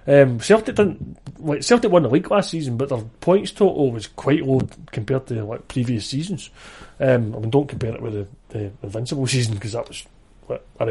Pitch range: 120-150 Hz